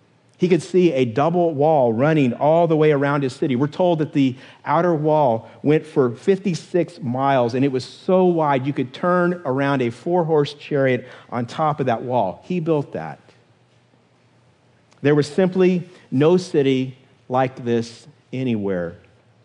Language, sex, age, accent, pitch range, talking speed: English, male, 50-69, American, 125-165 Hz, 155 wpm